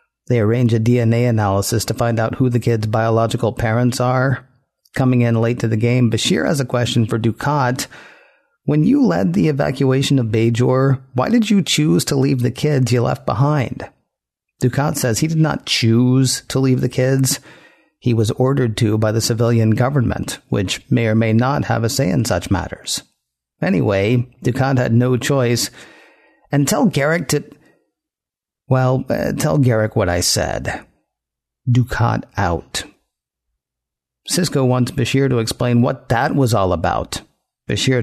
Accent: American